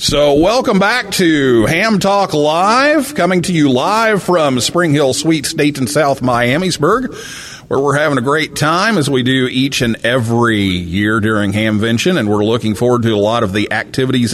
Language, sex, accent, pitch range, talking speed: English, male, American, 105-140 Hz, 185 wpm